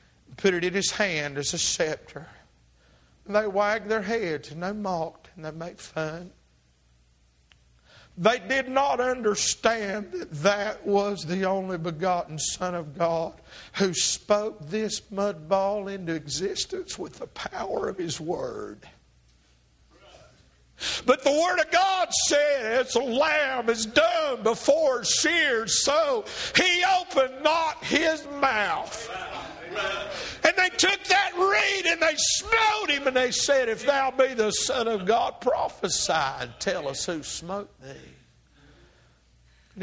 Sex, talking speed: male, 135 wpm